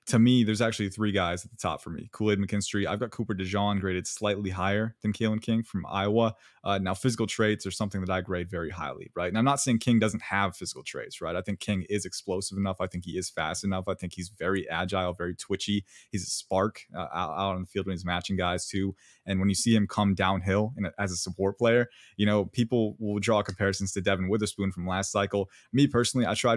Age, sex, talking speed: 20-39, male, 250 wpm